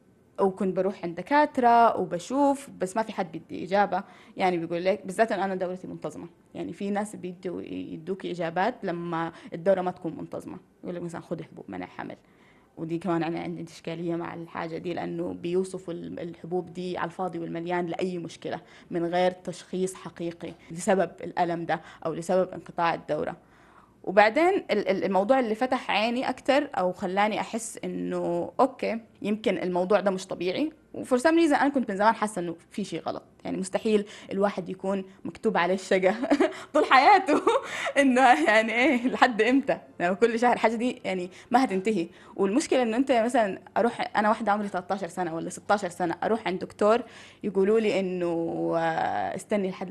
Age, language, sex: 20-39, Arabic, female